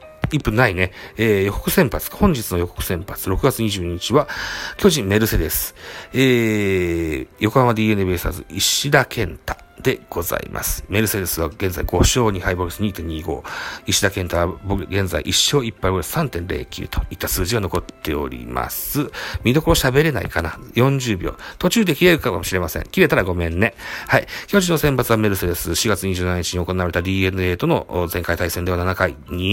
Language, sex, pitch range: Japanese, male, 90-120 Hz